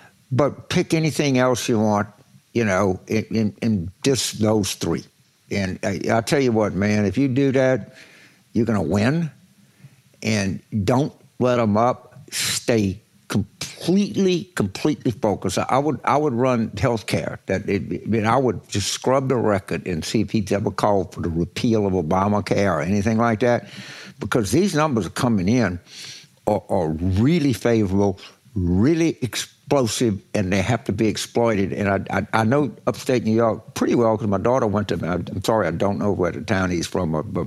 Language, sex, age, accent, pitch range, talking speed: English, male, 60-79, American, 100-125 Hz, 180 wpm